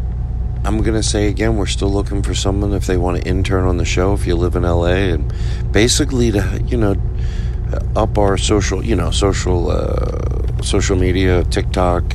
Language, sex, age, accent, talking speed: English, male, 40-59, American, 190 wpm